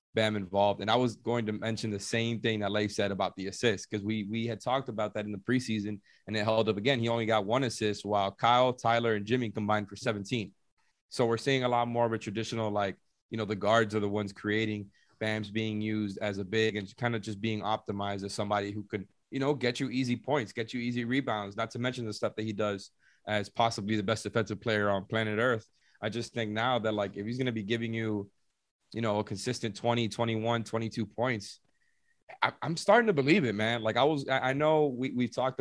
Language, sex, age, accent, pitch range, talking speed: English, male, 30-49, American, 105-120 Hz, 240 wpm